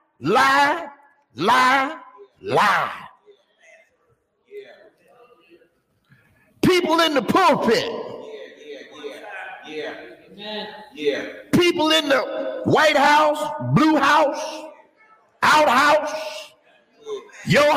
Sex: male